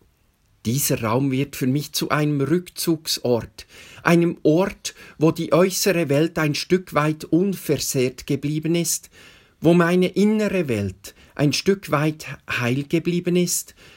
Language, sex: German, male